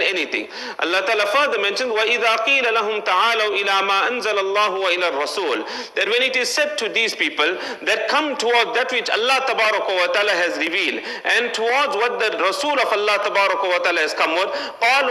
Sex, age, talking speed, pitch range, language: male, 40-59, 120 wpm, 215-295 Hz, English